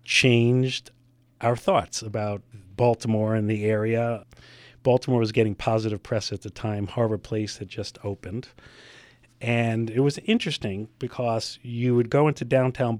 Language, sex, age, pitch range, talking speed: English, male, 40-59, 105-125 Hz, 145 wpm